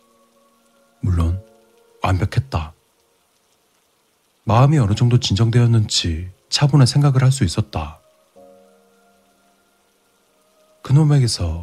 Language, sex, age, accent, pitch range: Korean, male, 40-59, native, 85-130 Hz